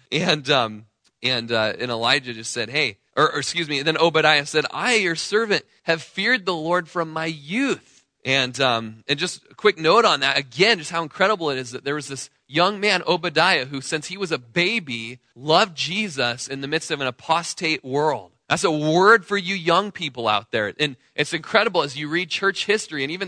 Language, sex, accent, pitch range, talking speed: English, male, American, 130-175 Hz, 215 wpm